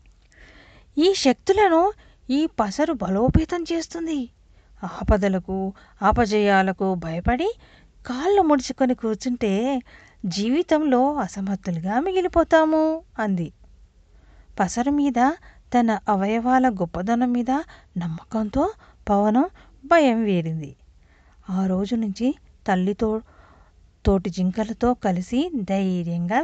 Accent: native